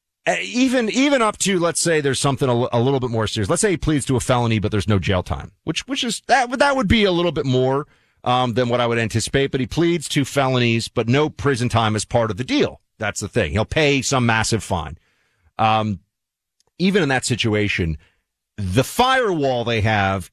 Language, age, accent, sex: English, 40-59, American, male